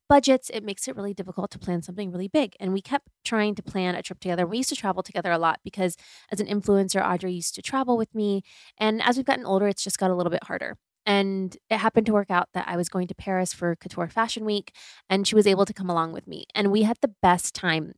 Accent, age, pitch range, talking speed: American, 20-39, 180-215 Hz, 265 wpm